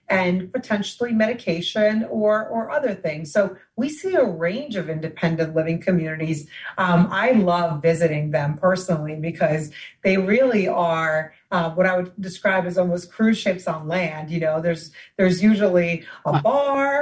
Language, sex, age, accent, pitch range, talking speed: English, female, 30-49, American, 165-210 Hz, 155 wpm